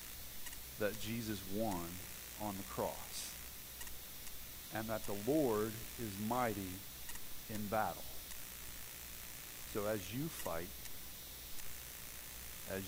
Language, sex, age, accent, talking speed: English, male, 50-69, American, 90 wpm